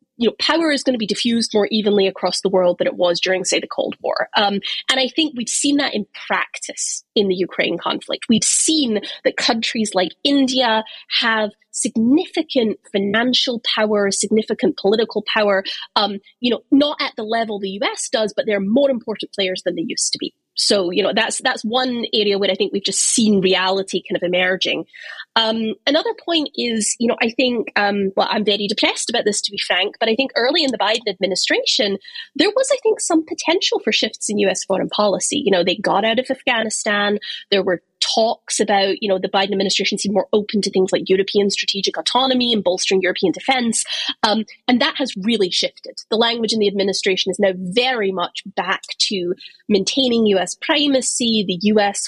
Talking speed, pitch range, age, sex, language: 200 wpm, 195-260 Hz, 20-39, female, English